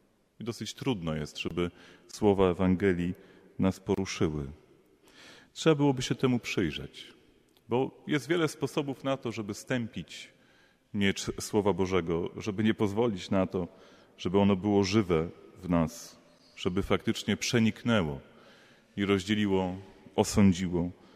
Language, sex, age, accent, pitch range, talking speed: Polish, male, 30-49, native, 85-110 Hz, 115 wpm